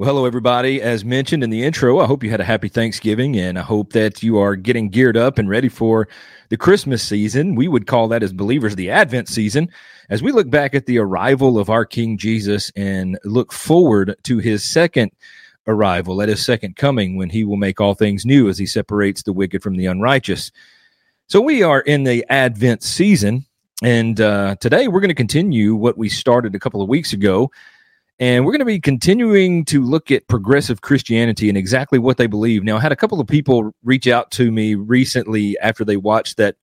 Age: 40-59